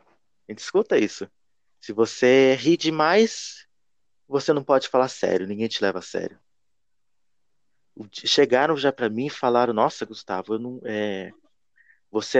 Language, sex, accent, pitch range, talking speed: Portuguese, male, Brazilian, 110-160 Hz, 135 wpm